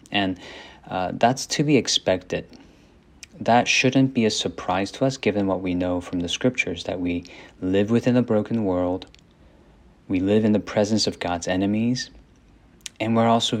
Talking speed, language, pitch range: 170 wpm, English, 90-110 Hz